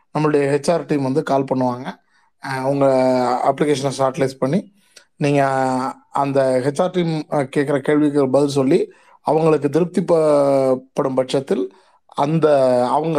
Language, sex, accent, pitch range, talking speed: Tamil, male, native, 135-165 Hz, 110 wpm